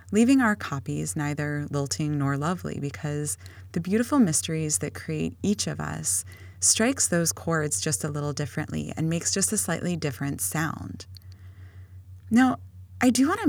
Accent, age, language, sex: American, 20-39, English, female